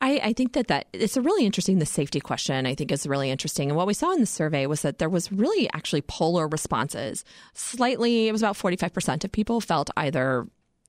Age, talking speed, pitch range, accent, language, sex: 30-49, 225 wpm, 150-200 Hz, American, English, female